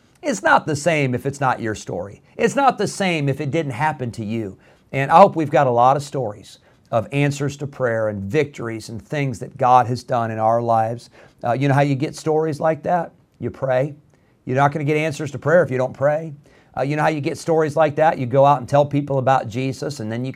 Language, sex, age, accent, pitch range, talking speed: English, male, 40-59, American, 120-155 Hz, 255 wpm